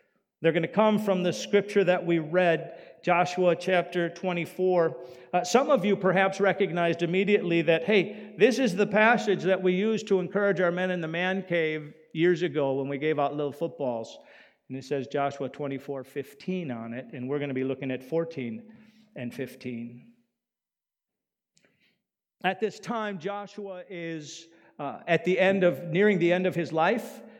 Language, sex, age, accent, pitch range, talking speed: English, male, 50-69, American, 140-195 Hz, 175 wpm